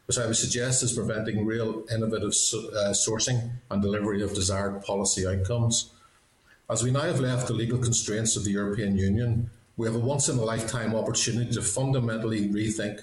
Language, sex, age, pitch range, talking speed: English, male, 50-69, 100-115 Hz, 170 wpm